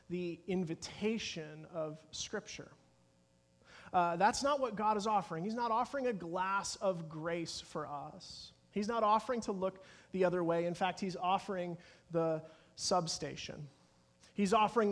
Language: English